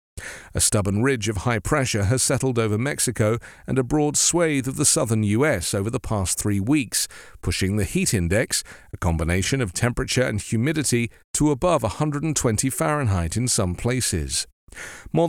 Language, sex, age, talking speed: English, male, 50-69, 160 wpm